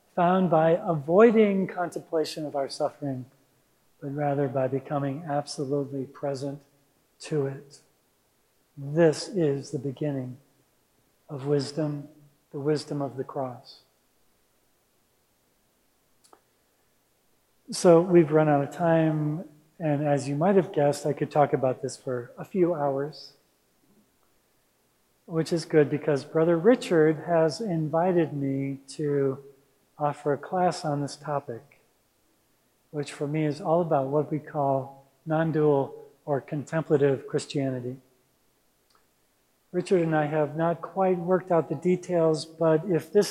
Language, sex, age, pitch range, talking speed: English, male, 40-59, 140-165 Hz, 125 wpm